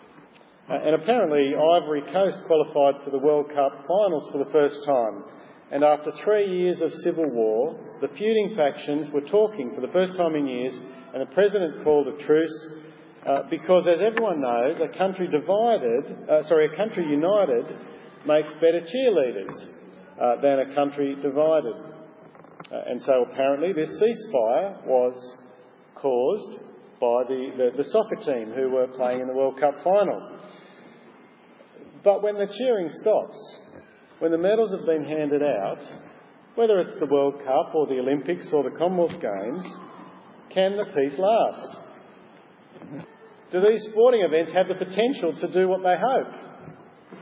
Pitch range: 145-195 Hz